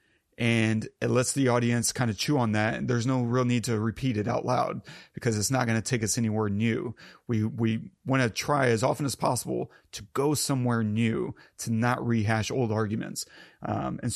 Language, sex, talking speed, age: English, male, 210 wpm, 30-49